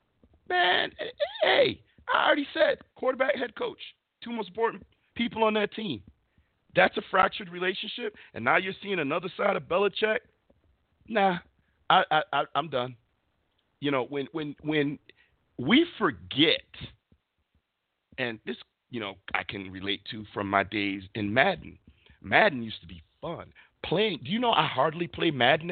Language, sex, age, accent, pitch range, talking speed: English, male, 50-69, American, 160-240 Hz, 155 wpm